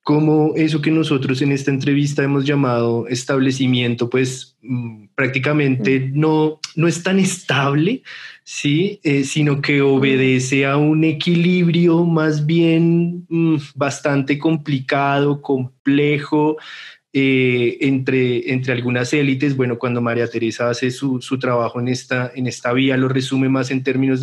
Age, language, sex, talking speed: 20-39, Spanish, male, 135 wpm